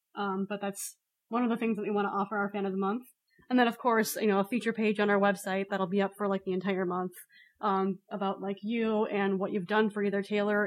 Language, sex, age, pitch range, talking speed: English, female, 20-39, 195-225 Hz, 270 wpm